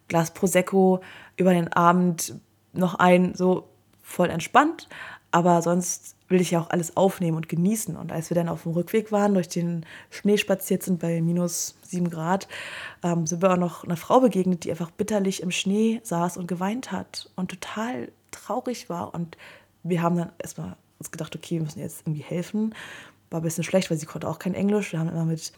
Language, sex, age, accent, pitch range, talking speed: German, female, 20-39, German, 170-195 Hz, 195 wpm